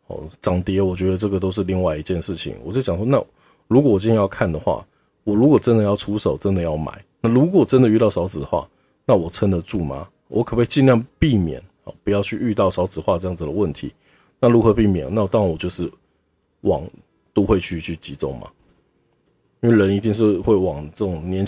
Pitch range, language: 90-110 Hz, Chinese